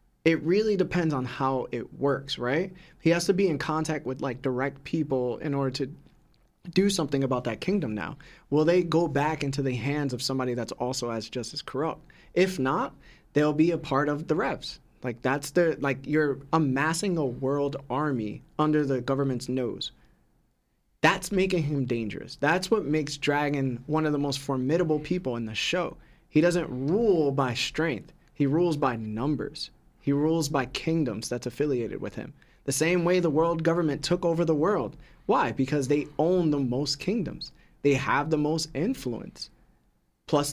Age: 20-39